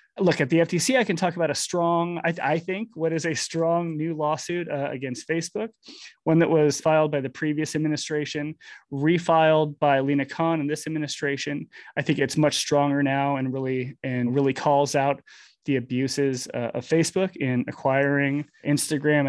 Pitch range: 145-175 Hz